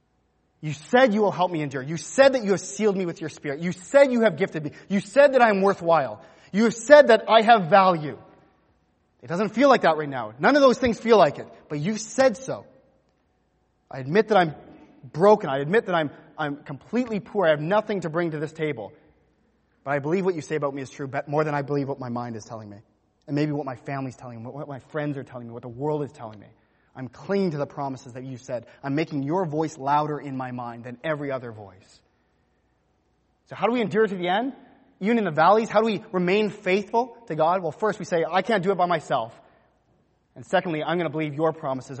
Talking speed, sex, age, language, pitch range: 245 wpm, male, 30-49, English, 135-195 Hz